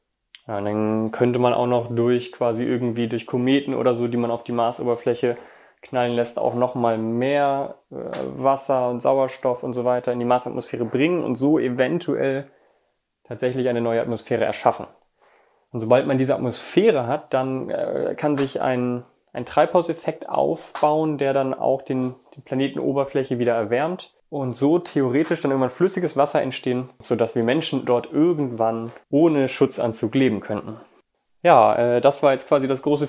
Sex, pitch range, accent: male, 120-140 Hz, German